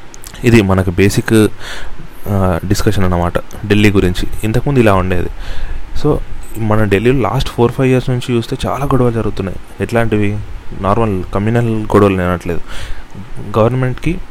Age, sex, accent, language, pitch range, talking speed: 30-49, male, native, Telugu, 95-115 Hz, 115 wpm